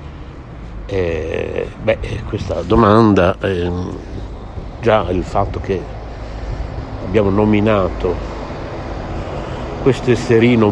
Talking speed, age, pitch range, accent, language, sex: 75 wpm, 60-79, 85-115 Hz, native, Italian, male